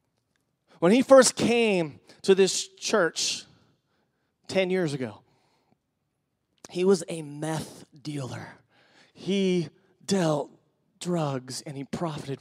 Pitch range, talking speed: 135-215 Hz, 100 wpm